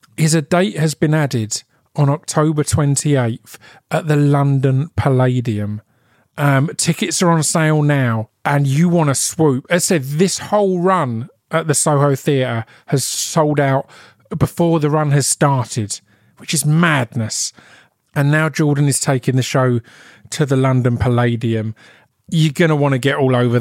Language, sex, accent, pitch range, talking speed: English, male, British, 125-160 Hz, 165 wpm